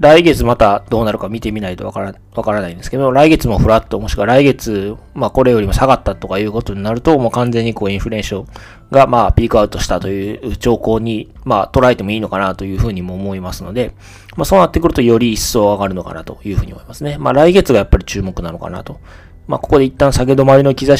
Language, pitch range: Japanese, 95-130 Hz